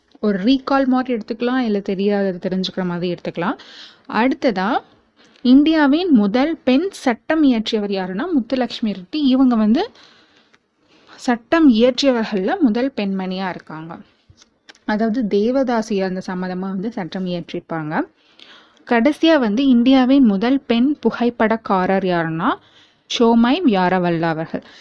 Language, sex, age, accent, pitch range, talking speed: Tamil, female, 20-39, native, 195-255 Hz, 100 wpm